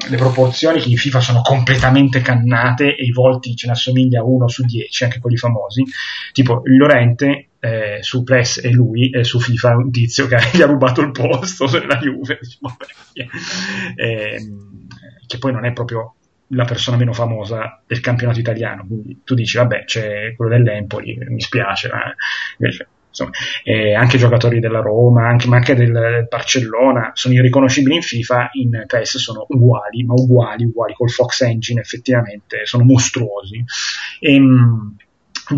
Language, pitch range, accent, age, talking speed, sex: Italian, 115-130 Hz, native, 30-49, 160 wpm, male